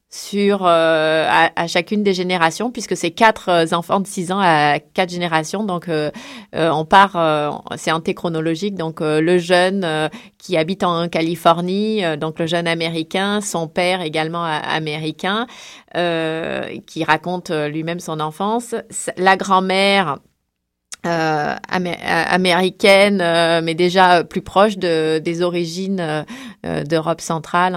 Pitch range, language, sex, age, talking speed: 165-195 Hz, French, female, 30-49, 150 wpm